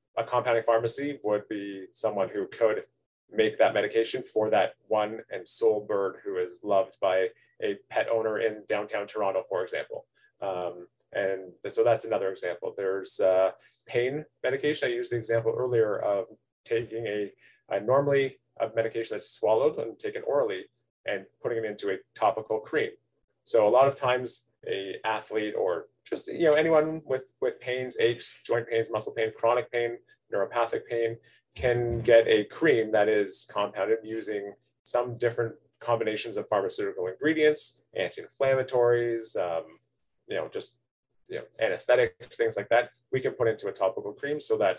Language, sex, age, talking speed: English, male, 30-49, 165 wpm